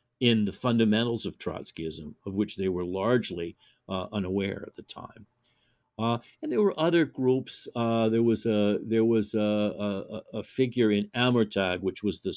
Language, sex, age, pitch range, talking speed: English, male, 50-69, 95-115 Hz, 175 wpm